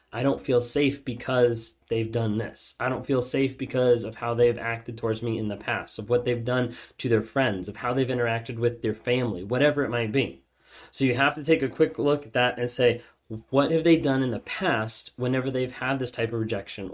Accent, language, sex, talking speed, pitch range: American, English, male, 235 wpm, 120-145 Hz